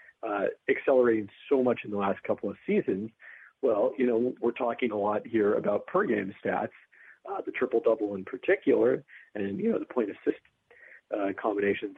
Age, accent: 40-59, American